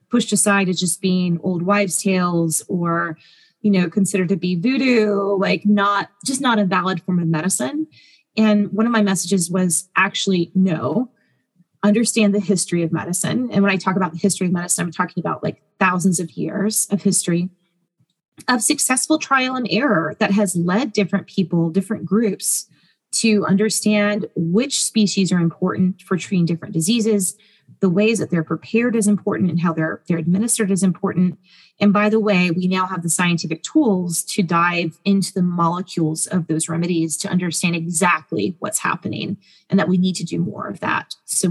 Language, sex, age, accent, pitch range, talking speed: English, female, 30-49, American, 175-210 Hz, 180 wpm